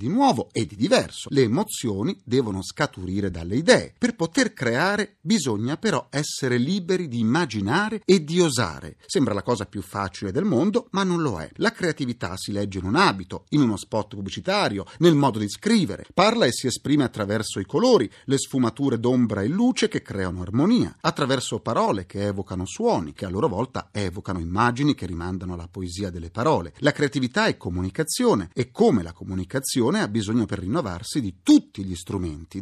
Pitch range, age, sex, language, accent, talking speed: 105-165 Hz, 40-59, male, Italian, native, 175 wpm